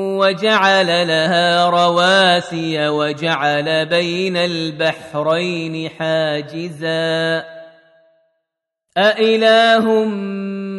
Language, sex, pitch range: Arabic, male, 160-195 Hz